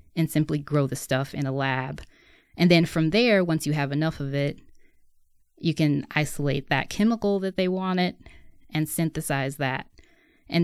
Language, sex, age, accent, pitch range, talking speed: English, female, 20-39, American, 140-175 Hz, 170 wpm